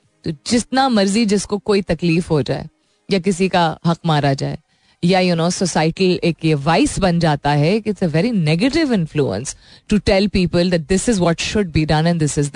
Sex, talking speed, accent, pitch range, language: female, 110 wpm, native, 165-225 Hz, Hindi